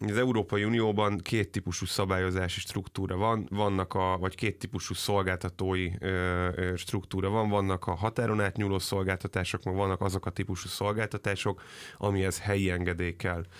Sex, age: male, 30-49